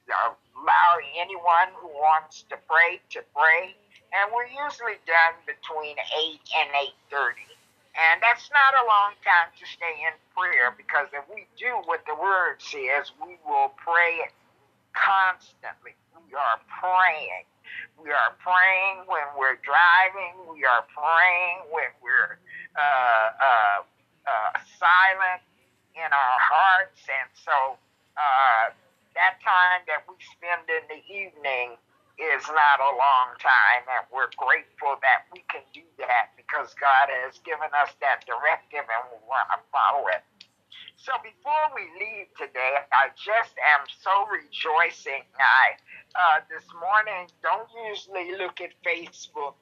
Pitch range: 155-195 Hz